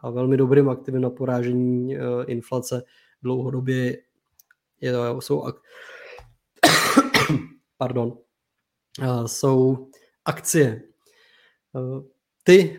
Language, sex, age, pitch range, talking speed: Czech, male, 20-39, 130-150 Hz, 90 wpm